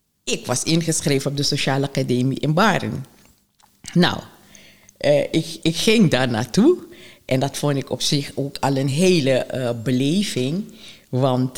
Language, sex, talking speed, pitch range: Dutch, female, 150 wpm, 140-185 Hz